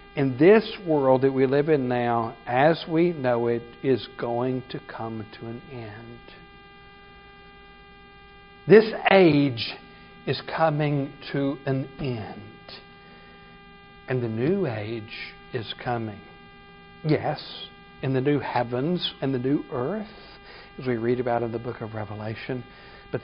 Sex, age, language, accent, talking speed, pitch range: male, 60-79, English, American, 130 wpm, 130-200 Hz